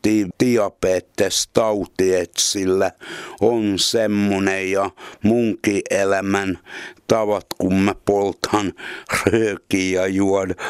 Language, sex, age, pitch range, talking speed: Finnish, male, 60-79, 95-110 Hz, 75 wpm